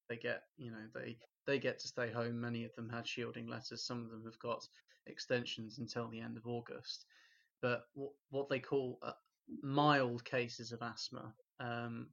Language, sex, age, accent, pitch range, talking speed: English, male, 20-39, British, 115-130 Hz, 190 wpm